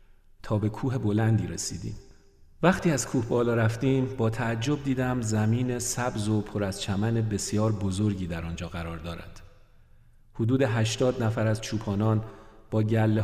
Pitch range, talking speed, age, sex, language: 100-120 Hz, 145 wpm, 40-59, male, Persian